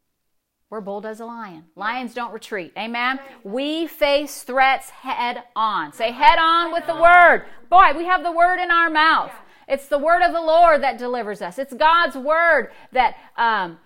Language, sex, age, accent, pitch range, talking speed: English, female, 40-59, American, 220-300 Hz, 180 wpm